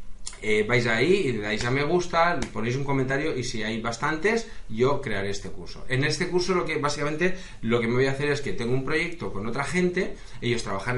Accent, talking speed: Spanish, 230 wpm